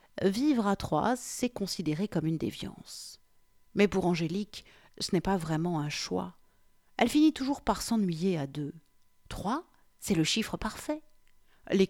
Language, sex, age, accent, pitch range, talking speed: French, female, 50-69, French, 160-215 Hz, 150 wpm